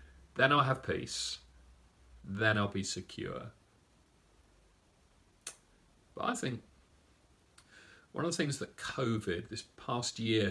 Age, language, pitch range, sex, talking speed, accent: 40-59, English, 95-125 Hz, male, 115 wpm, British